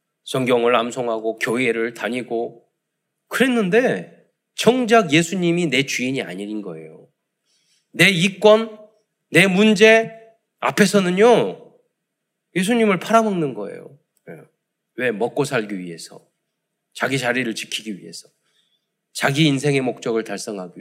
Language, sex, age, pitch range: Korean, male, 40-59, 140-215 Hz